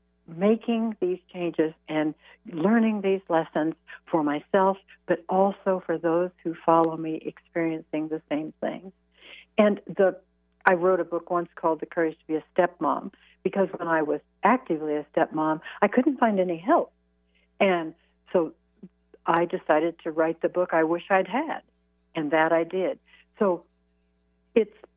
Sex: female